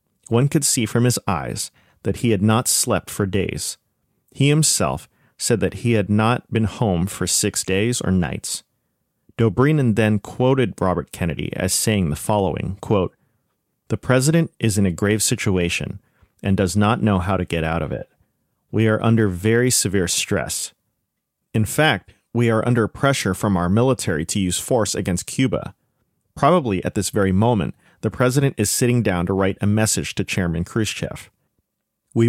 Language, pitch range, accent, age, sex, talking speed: English, 95-120 Hz, American, 40-59, male, 170 wpm